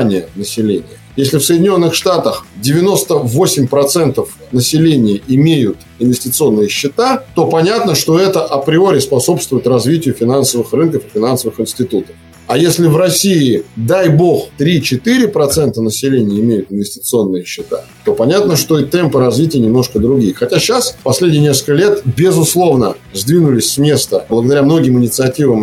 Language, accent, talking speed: Russian, native, 125 wpm